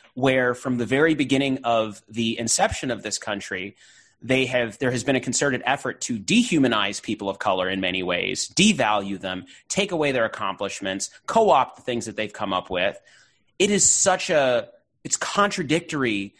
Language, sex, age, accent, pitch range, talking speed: English, male, 30-49, American, 115-170 Hz, 170 wpm